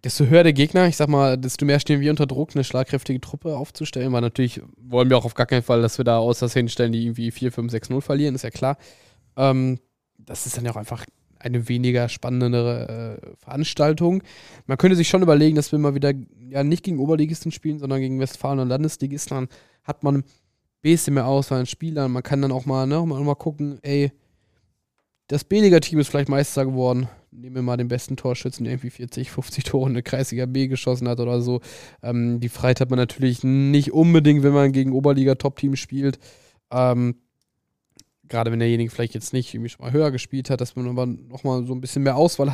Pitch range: 125-145 Hz